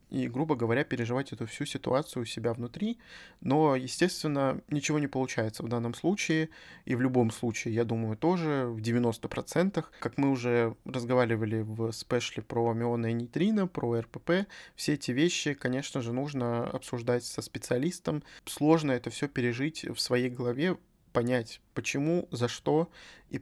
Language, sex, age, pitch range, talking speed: Russian, male, 20-39, 120-145 Hz, 150 wpm